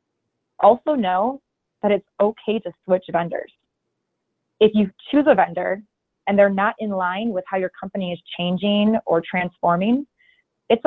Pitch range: 180-220 Hz